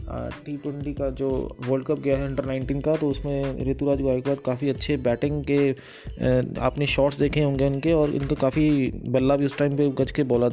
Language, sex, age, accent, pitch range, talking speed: Hindi, male, 20-39, native, 135-150 Hz, 200 wpm